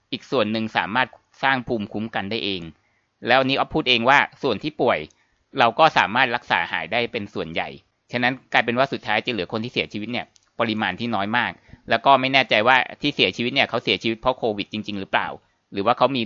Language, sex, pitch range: Thai, male, 110-130 Hz